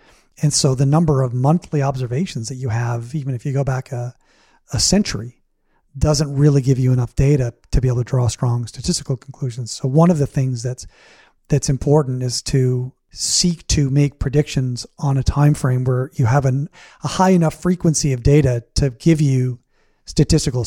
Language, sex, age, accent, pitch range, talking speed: English, male, 40-59, American, 130-155 Hz, 185 wpm